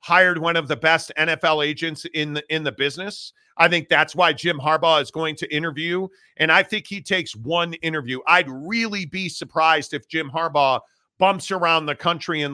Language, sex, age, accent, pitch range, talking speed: English, male, 40-59, American, 155-180 Hz, 195 wpm